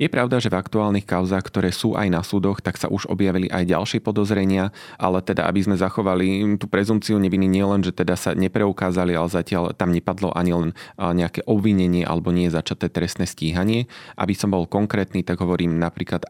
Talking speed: 190 wpm